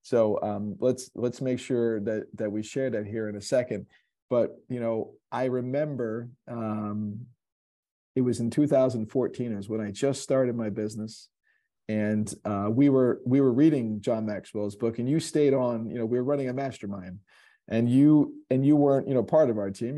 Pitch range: 105-125 Hz